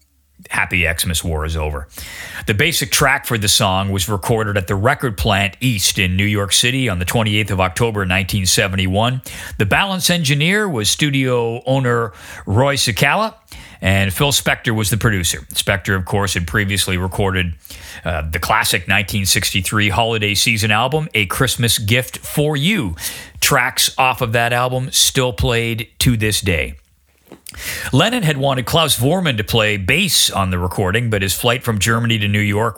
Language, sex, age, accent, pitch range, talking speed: English, male, 40-59, American, 90-115 Hz, 165 wpm